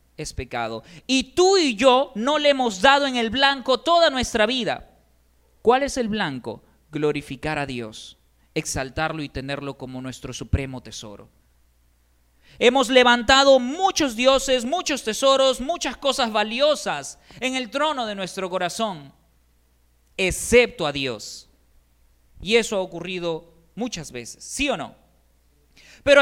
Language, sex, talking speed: Spanish, male, 135 wpm